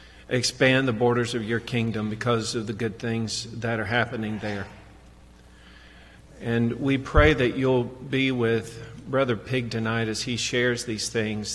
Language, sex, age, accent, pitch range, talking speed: English, male, 40-59, American, 105-120 Hz, 155 wpm